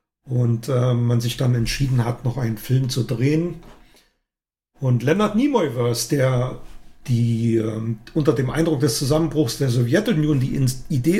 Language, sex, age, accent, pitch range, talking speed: German, male, 40-59, German, 125-160 Hz, 145 wpm